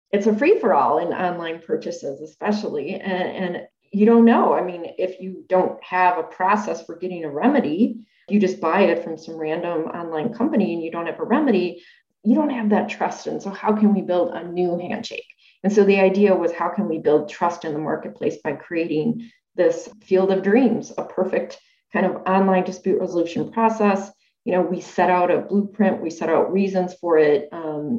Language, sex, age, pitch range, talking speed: English, female, 30-49, 165-220 Hz, 205 wpm